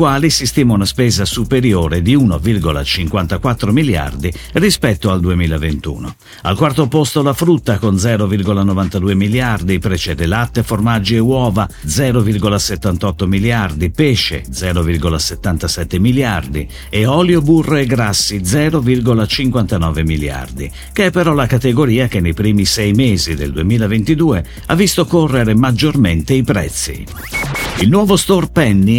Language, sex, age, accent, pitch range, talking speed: Italian, male, 50-69, native, 85-135 Hz, 125 wpm